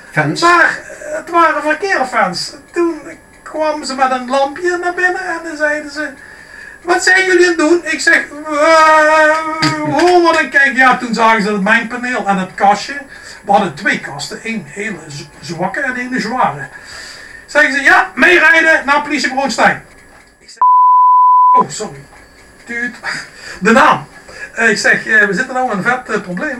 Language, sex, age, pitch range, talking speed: Dutch, male, 60-79, 200-305 Hz, 155 wpm